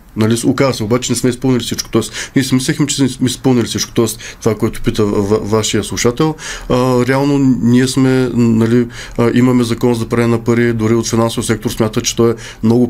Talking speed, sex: 185 wpm, male